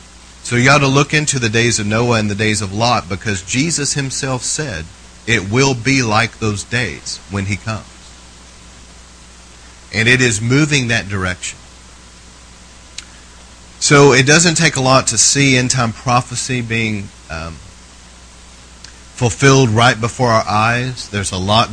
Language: English